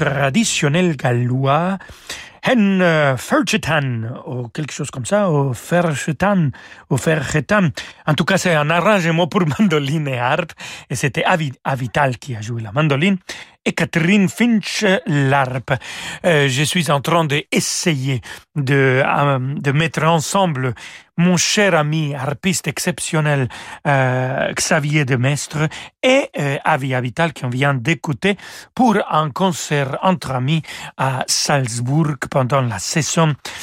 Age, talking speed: 40-59, 130 wpm